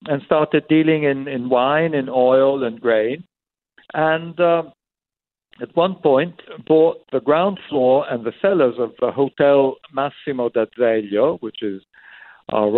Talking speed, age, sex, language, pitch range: 140 wpm, 60-79, male, English, 120-155 Hz